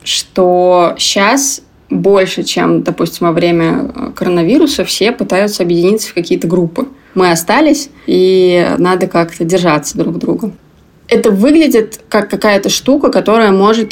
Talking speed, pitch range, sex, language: 130 wpm, 175-220 Hz, female, Russian